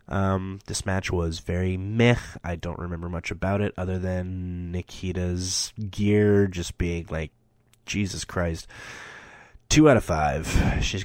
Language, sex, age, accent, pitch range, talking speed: English, male, 20-39, American, 90-110 Hz, 140 wpm